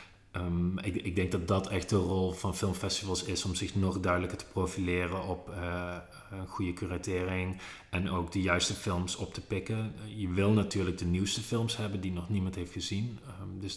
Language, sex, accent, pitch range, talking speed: Dutch, male, Dutch, 90-100 Hz, 185 wpm